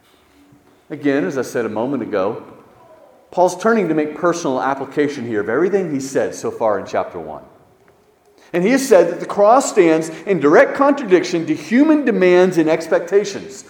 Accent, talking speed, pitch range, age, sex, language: American, 170 wpm, 145-215 Hz, 40-59, male, English